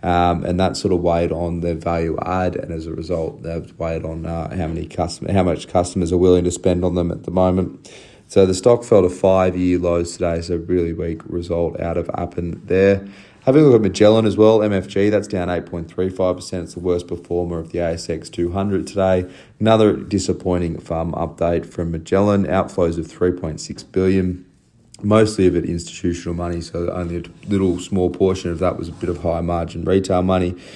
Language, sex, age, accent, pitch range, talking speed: English, male, 30-49, Australian, 85-95 Hz, 200 wpm